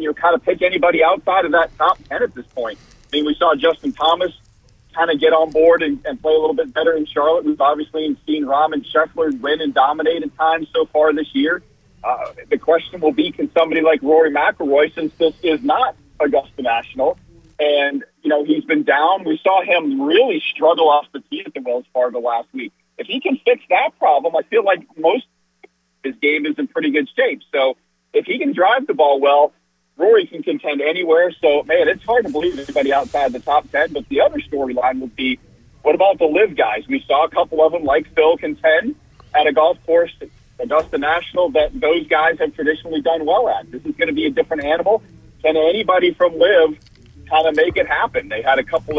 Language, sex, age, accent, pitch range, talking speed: English, male, 40-59, American, 150-245 Hz, 225 wpm